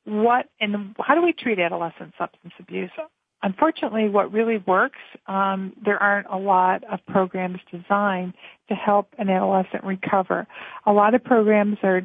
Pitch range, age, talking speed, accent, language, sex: 185-215 Hz, 40-59, 155 wpm, American, English, female